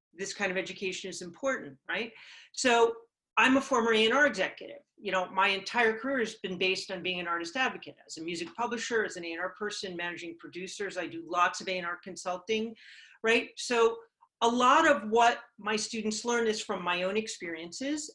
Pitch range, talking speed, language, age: 180-225 Hz, 190 wpm, English, 40-59